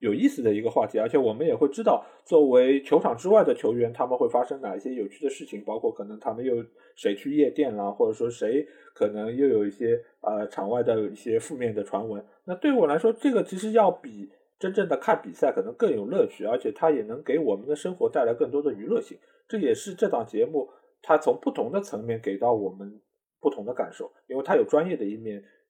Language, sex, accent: Chinese, male, native